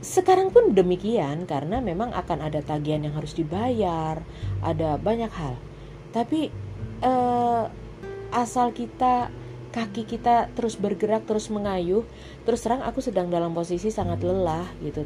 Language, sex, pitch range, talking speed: Indonesian, female, 145-205 Hz, 130 wpm